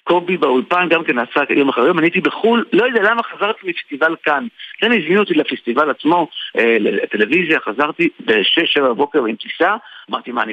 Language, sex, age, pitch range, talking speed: Hebrew, male, 60-79, 140-215 Hz, 175 wpm